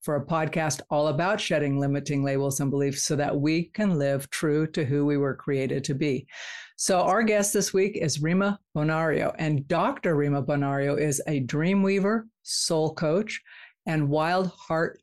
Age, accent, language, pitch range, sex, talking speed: 50-69, American, English, 150-185 Hz, female, 175 wpm